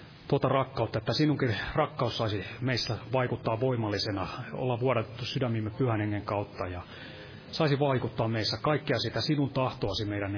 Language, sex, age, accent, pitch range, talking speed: Finnish, male, 30-49, native, 105-130 Hz, 140 wpm